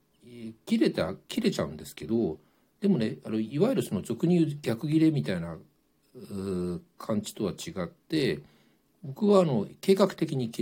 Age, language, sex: 60-79, Japanese, male